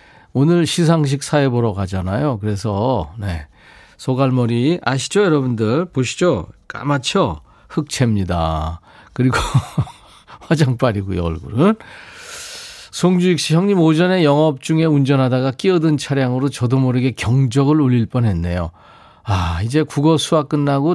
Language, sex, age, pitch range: Korean, male, 40-59, 115-160 Hz